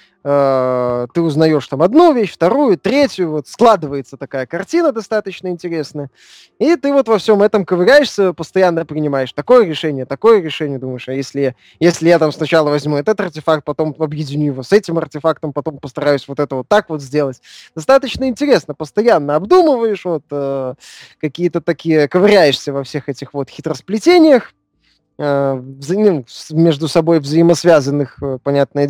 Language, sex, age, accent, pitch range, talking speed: Russian, male, 20-39, native, 140-195 Hz, 140 wpm